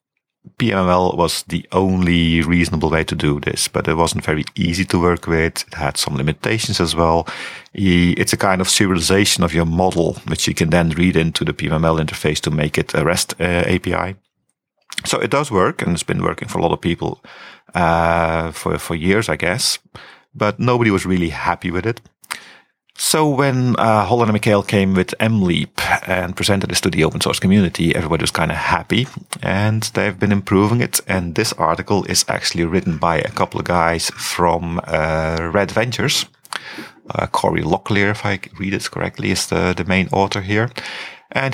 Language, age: English, 40-59